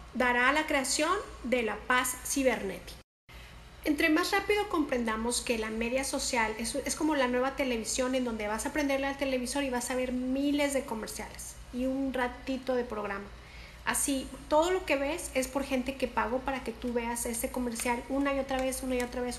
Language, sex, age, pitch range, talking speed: English, female, 40-59, 240-280 Hz, 200 wpm